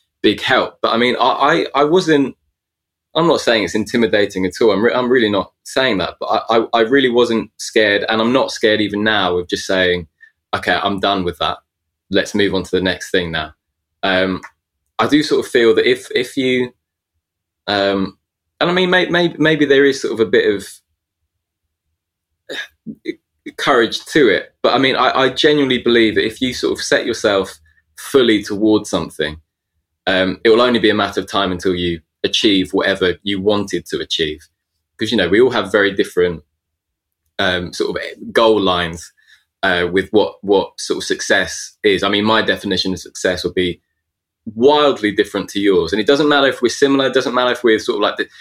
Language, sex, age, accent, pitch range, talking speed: English, male, 20-39, British, 85-125 Hz, 200 wpm